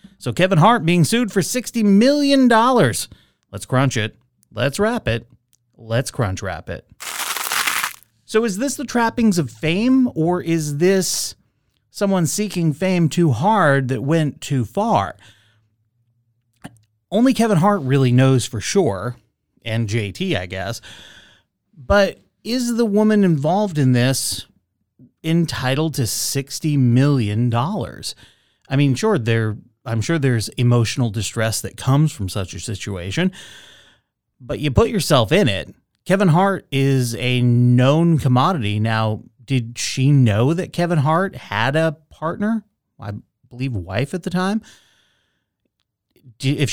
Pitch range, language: 120-180 Hz, English